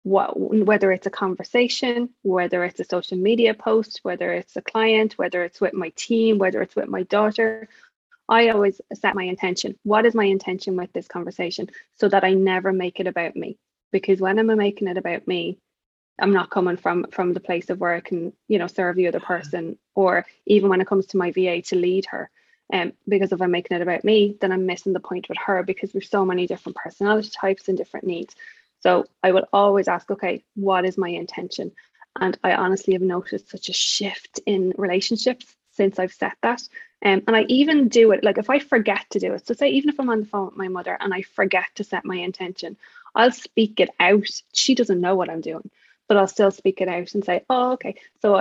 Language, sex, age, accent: English, female, 20-39, Irish